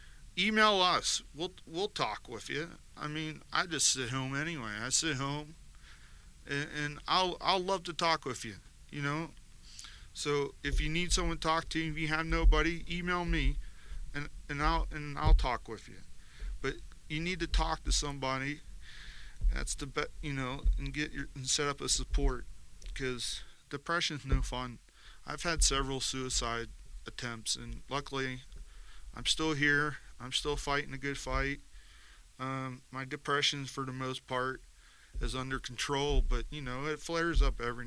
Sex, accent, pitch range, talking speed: male, American, 130-160 Hz, 170 wpm